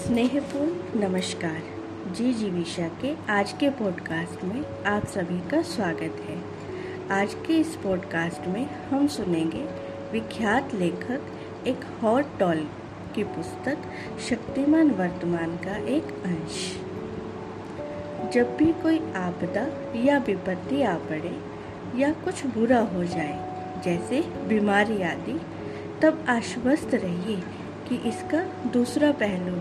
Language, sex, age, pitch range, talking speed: Hindi, female, 60-79, 180-280 Hz, 115 wpm